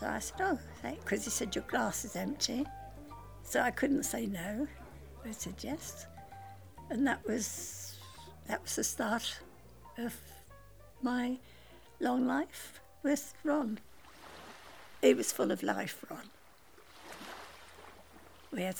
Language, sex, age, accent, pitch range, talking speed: English, female, 60-79, British, 185-275 Hz, 130 wpm